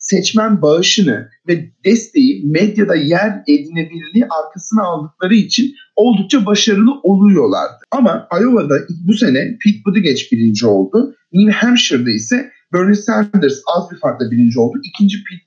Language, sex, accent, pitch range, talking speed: Turkish, male, native, 155-220 Hz, 130 wpm